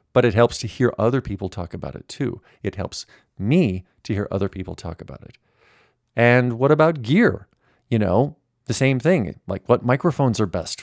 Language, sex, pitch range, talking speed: English, male, 105-135 Hz, 195 wpm